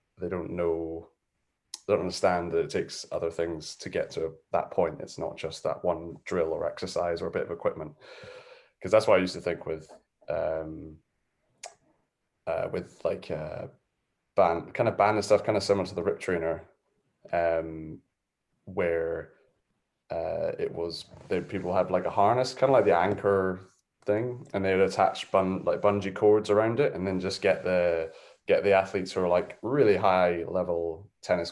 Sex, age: male, 20-39